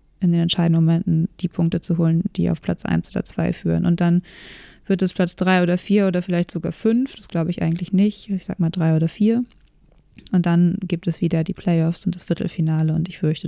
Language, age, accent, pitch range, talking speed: German, 20-39, German, 170-190 Hz, 225 wpm